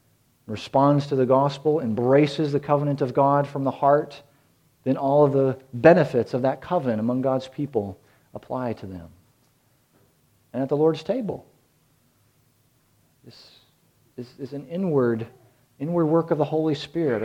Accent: American